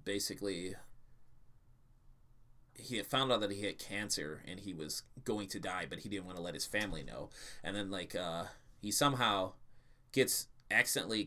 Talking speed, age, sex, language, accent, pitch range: 170 wpm, 20-39, male, English, American, 105-125 Hz